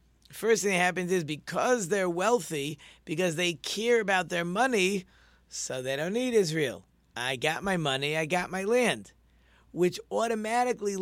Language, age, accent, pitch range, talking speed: English, 40-59, American, 135-180 Hz, 160 wpm